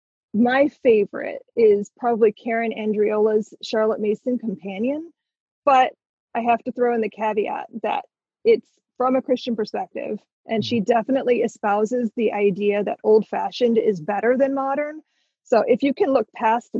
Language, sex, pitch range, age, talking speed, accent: English, female, 215-255 Hz, 30-49, 145 wpm, American